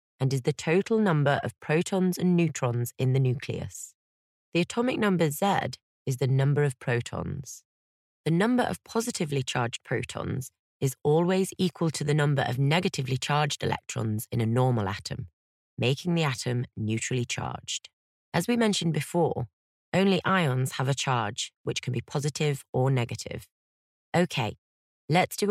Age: 30-49